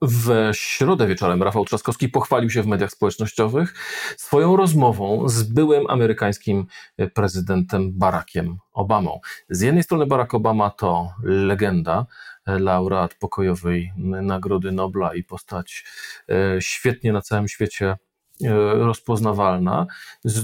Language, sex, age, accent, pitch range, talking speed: Polish, male, 40-59, native, 100-125 Hz, 110 wpm